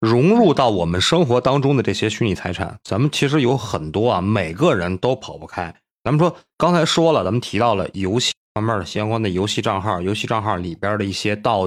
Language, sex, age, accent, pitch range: Chinese, male, 30-49, native, 95-135 Hz